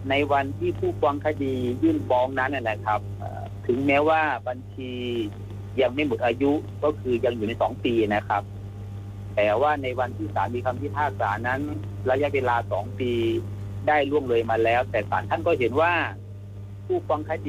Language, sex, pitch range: Thai, male, 100-130 Hz